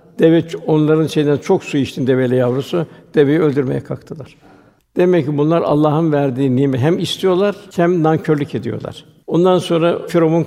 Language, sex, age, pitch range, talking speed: Turkish, male, 60-79, 135-160 Hz, 145 wpm